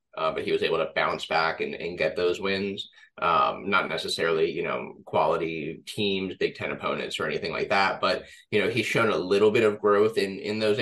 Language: English